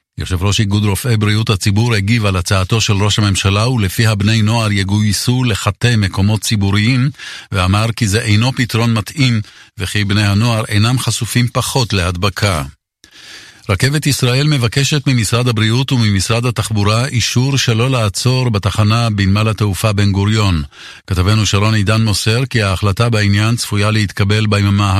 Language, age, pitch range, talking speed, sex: English, 50-69, 100-115 Hz, 135 wpm, male